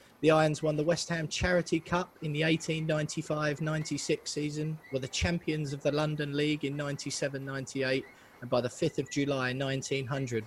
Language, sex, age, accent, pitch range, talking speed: English, male, 20-39, British, 125-155 Hz, 160 wpm